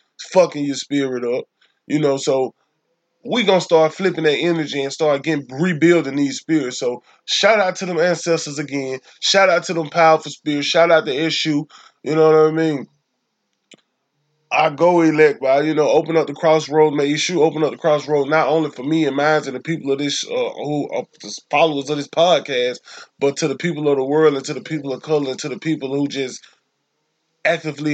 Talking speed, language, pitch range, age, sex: 200 wpm, English, 145-170 Hz, 20-39, male